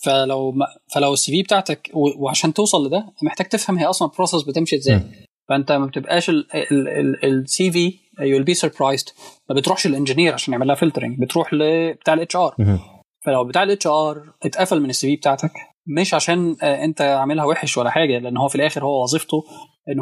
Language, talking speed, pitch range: Arabic, 180 wpm, 135-160 Hz